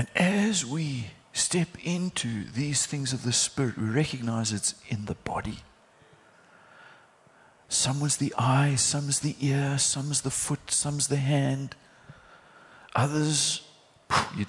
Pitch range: 115-165 Hz